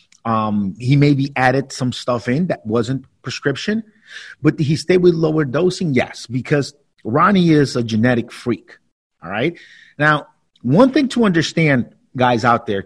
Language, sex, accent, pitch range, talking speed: English, male, American, 125-175 Hz, 155 wpm